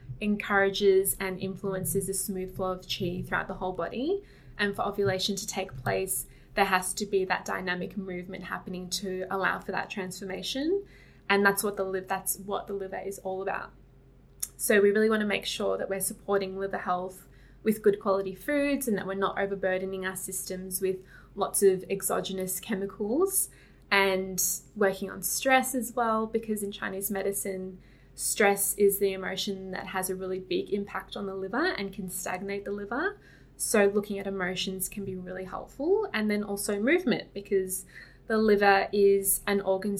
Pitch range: 190-205 Hz